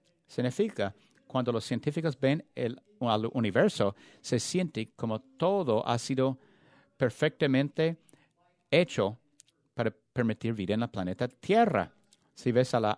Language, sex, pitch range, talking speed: English, male, 120-175 Hz, 125 wpm